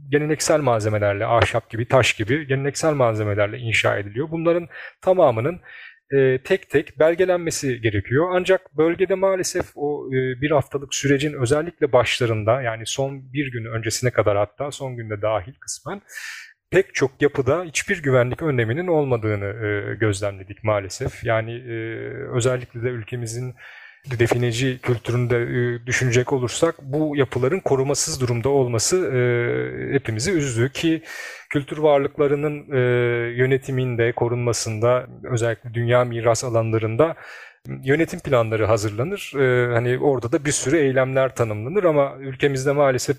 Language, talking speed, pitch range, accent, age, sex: Turkish, 120 wpm, 115-150 Hz, native, 40-59, male